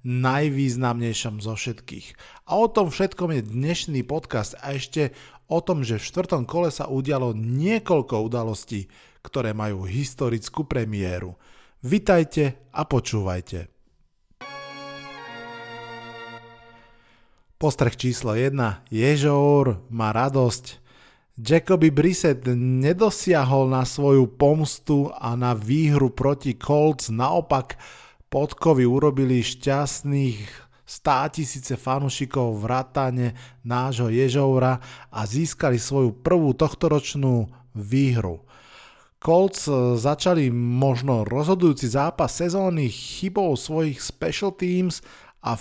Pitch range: 120-150 Hz